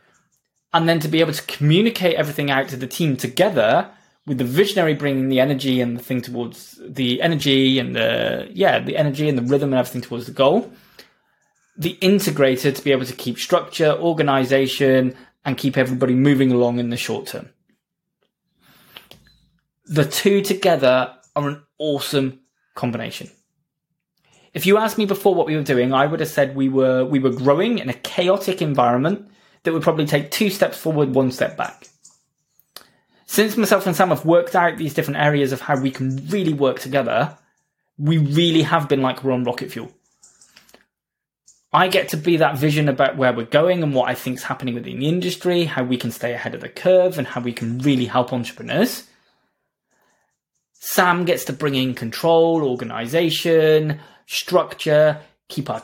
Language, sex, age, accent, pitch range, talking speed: English, male, 20-39, British, 130-170 Hz, 175 wpm